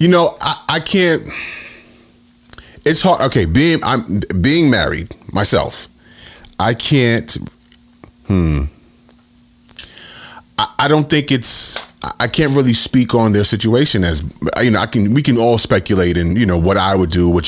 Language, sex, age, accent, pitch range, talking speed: English, male, 30-49, American, 90-125 Hz, 155 wpm